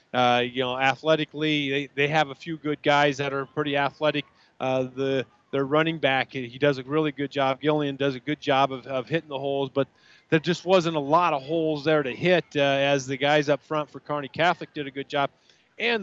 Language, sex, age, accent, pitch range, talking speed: English, male, 30-49, American, 130-155 Hz, 230 wpm